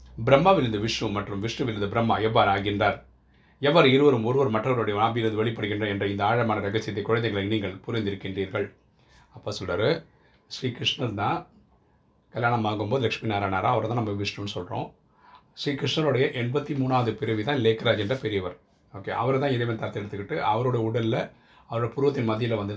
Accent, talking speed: native, 140 wpm